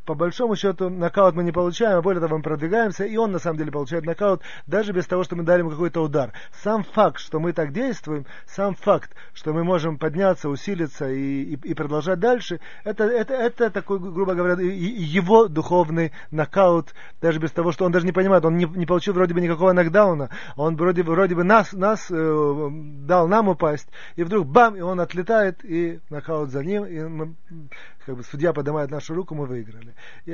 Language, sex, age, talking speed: Russian, male, 30-49, 205 wpm